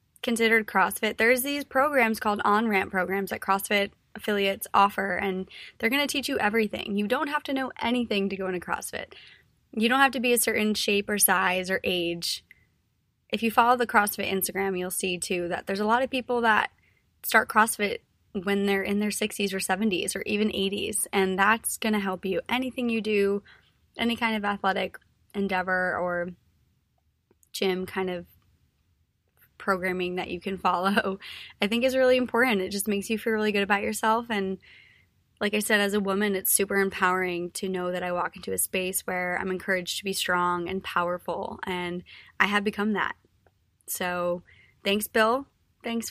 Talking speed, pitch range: 185 wpm, 185-220 Hz